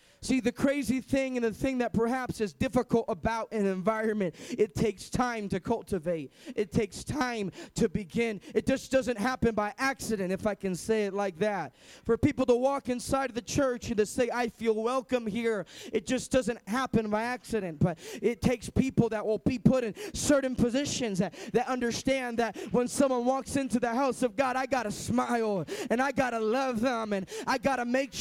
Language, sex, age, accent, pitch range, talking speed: English, male, 20-39, American, 185-260 Hz, 205 wpm